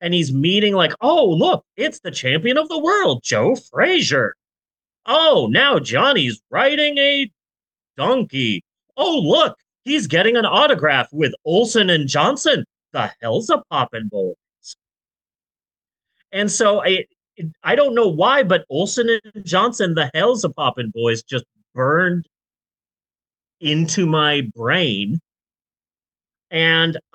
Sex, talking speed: male, 125 wpm